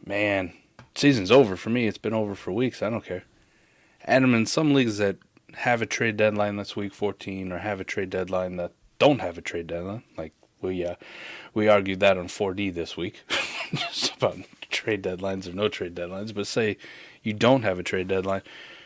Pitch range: 95-120 Hz